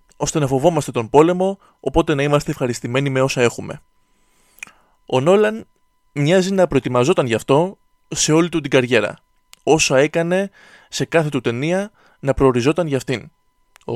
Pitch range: 125-170 Hz